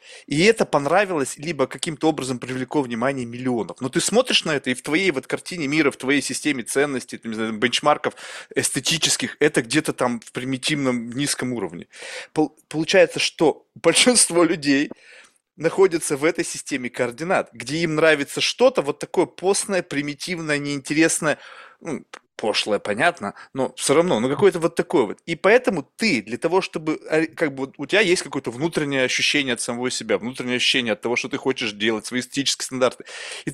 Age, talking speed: 20-39, 165 wpm